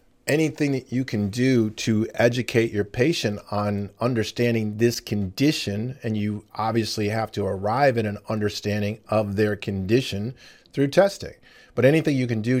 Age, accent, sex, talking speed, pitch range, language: 40-59, American, male, 150 wpm, 105-125 Hz, English